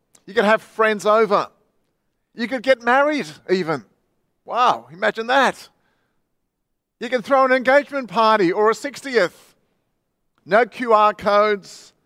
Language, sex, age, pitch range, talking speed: English, male, 50-69, 170-230 Hz, 125 wpm